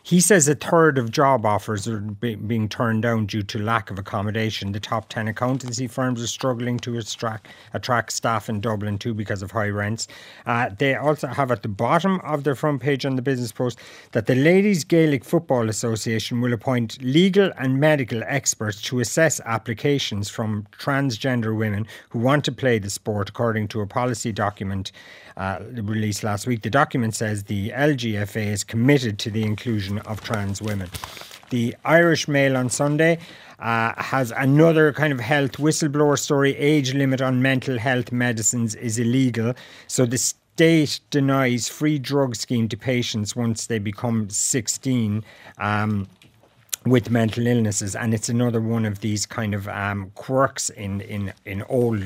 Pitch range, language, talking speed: 110-135 Hz, English, 170 wpm